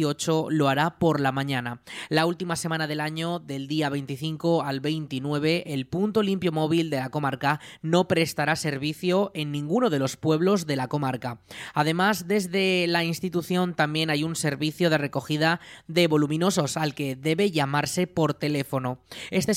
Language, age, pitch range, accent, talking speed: Spanish, 20-39, 145-180 Hz, Spanish, 160 wpm